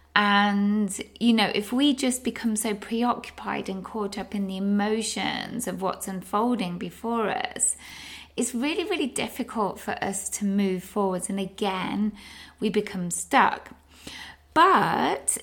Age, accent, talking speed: 20-39, British, 135 wpm